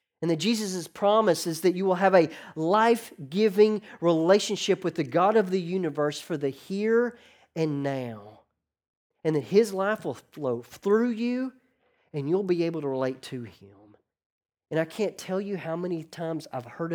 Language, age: English, 40-59